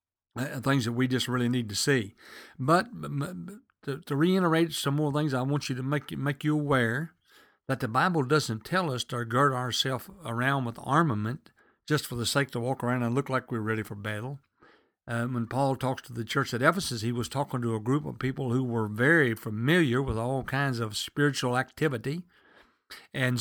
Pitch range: 125-155 Hz